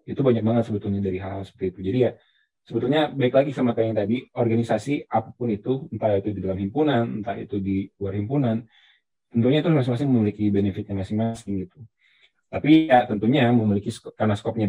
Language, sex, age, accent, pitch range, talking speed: Indonesian, male, 20-39, native, 105-125 Hz, 185 wpm